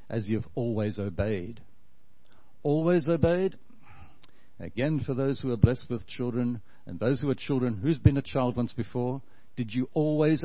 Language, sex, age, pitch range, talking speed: English, male, 60-79, 110-145 Hz, 160 wpm